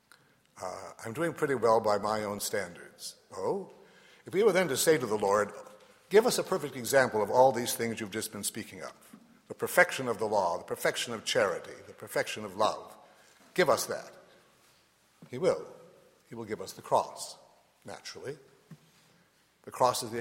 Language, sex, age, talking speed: English, male, 60-79, 185 wpm